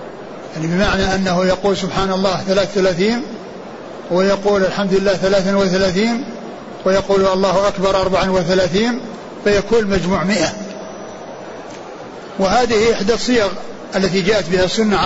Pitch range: 190-215 Hz